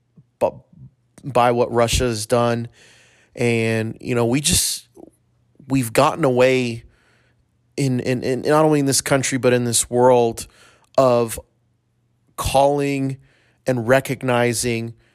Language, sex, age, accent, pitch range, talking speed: English, male, 30-49, American, 120-135 Hz, 120 wpm